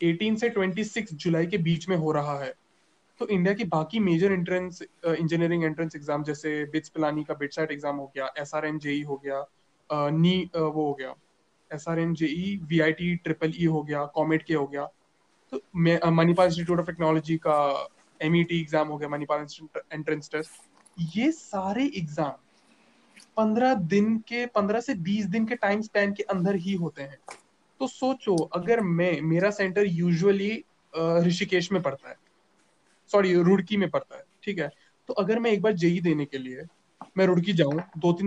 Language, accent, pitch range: English, Indian, 155-205 Hz